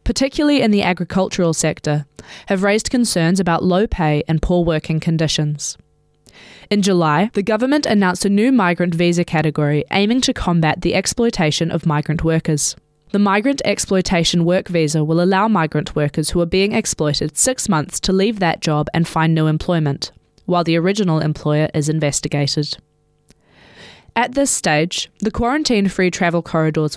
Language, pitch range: English, 155-200 Hz